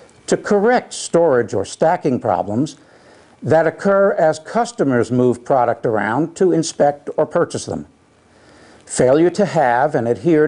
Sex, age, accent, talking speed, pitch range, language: male, 60-79, American, 130 wpm, 130-180 Hz, English